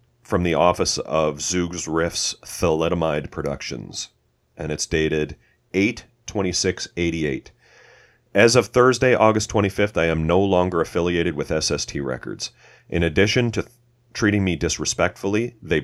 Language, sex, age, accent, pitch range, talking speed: English, male, 40-59, American, 80-100 Hz, 145 wpm